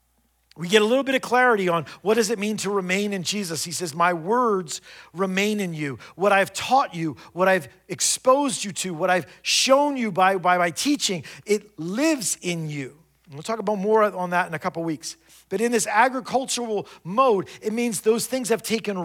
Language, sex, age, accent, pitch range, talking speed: English, male, 40-59, American, 180-245 Hz, 205 wpm